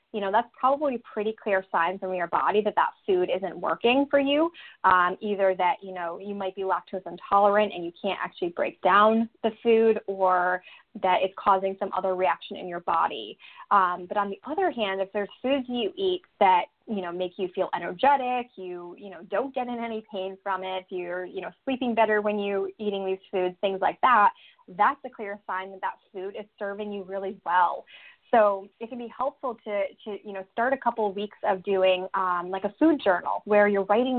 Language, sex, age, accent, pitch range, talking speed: English, female, 20-39, American, 185-220 Hz, 210 wpm